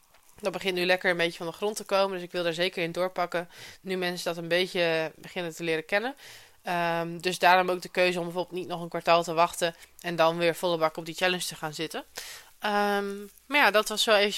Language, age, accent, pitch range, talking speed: Dutch, 20-39, Dutch, 165-190 Hz, 240 wpm